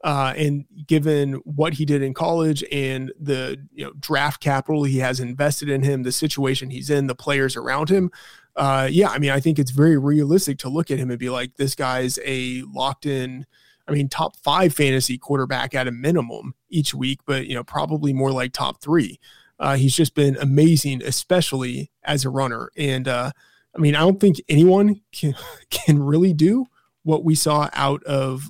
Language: English